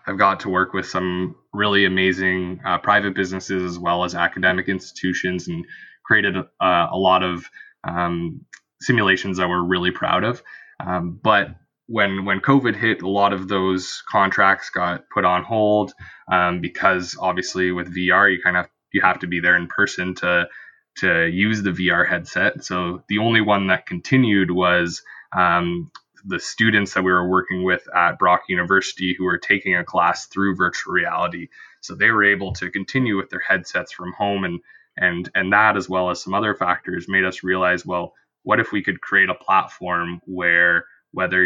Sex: male